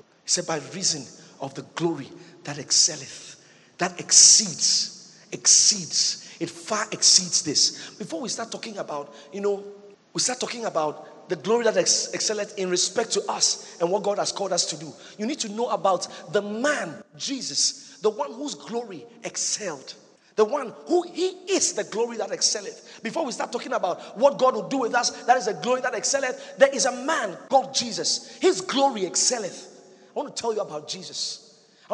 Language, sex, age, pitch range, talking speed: English, male, 50-69, 180-245 Hz, 190 wpm